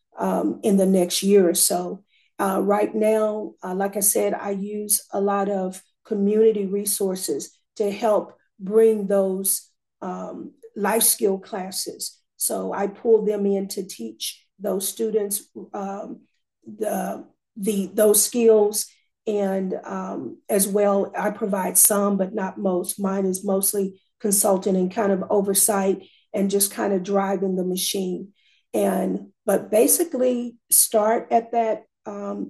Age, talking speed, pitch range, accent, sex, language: 40-59, 135 wpm, 195-215 Hz, American, female, English